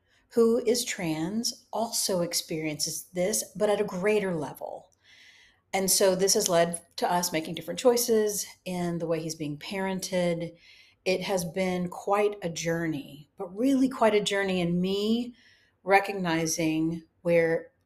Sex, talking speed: female, 140 wpm